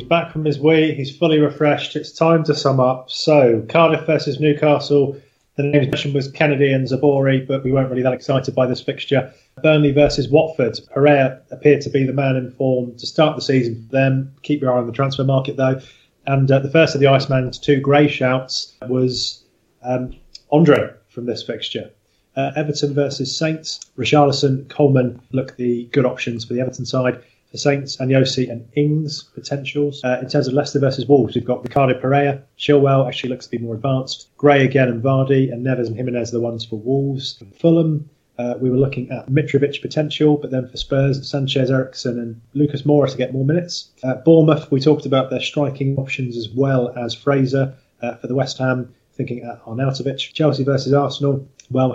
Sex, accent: male, British